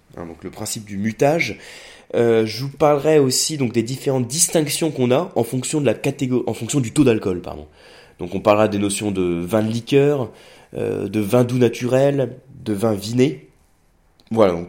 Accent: French